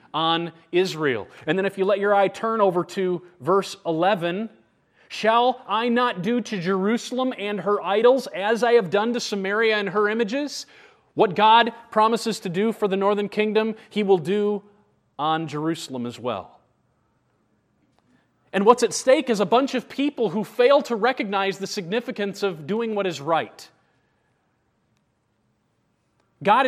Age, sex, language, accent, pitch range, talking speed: 30-49, male, English, American, 165-225 Hz, 155 wpm